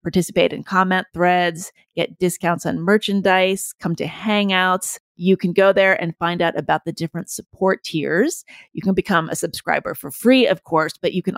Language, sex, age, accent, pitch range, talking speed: English, female, 30-49, American, 170-200 Hz, 185 wpm